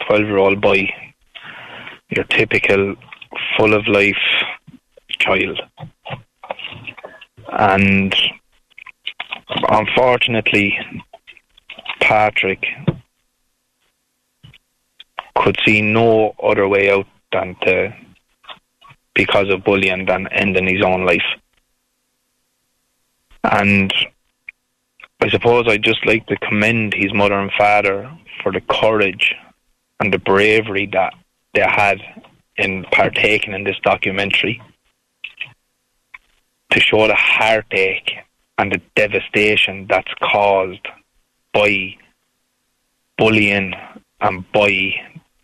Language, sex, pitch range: English, male, 95-105 Hz